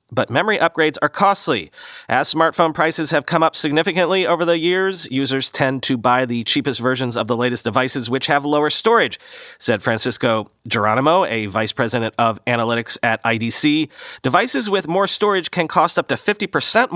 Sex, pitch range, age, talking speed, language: male, 125-185 Hz, 40-59, 175 wpm, English